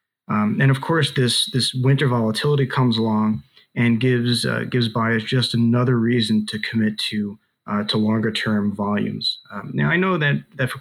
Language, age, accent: English, 30-49, American